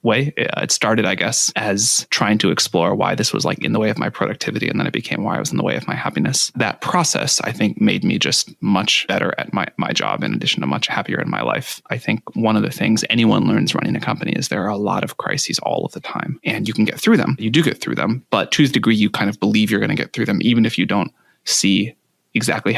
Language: English